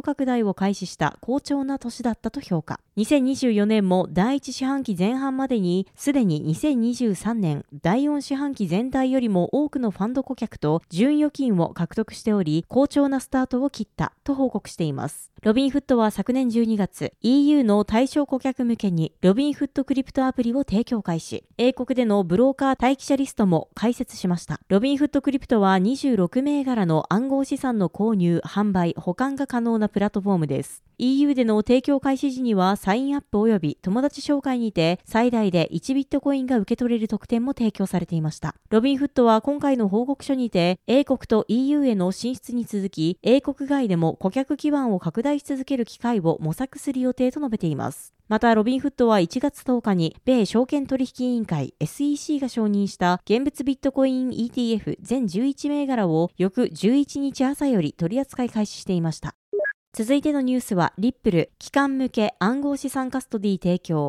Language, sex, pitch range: Japanese, female, 190-270 Hz